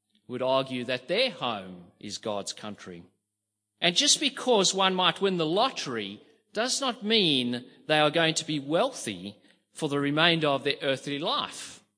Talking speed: 160 wpm